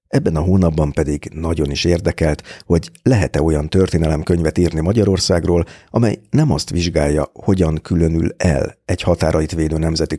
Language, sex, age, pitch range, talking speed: Hungarian, male, 50-69, 80-95 Hz, 140 wpm